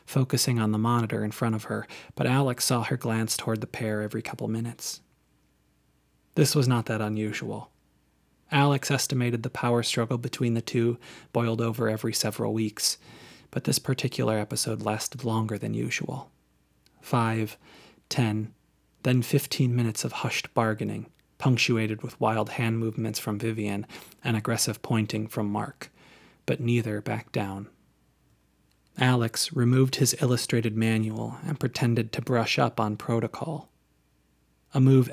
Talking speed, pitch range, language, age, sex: 140 wpm, 105-125 Hz, English, 30-49, male